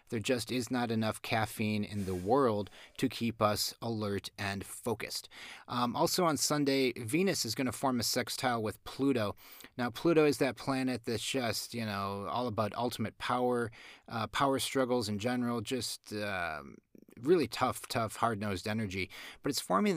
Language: English